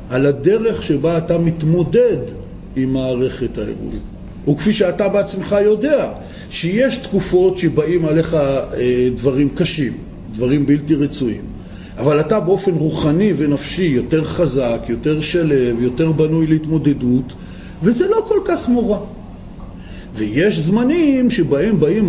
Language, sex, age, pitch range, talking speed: Hebrew, male, 40-59, 145-210 Hz, 115 wpm